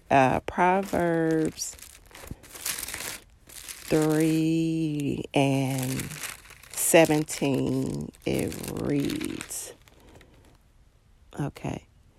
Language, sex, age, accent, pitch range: English, female, 40-59, American, 140-165 Hz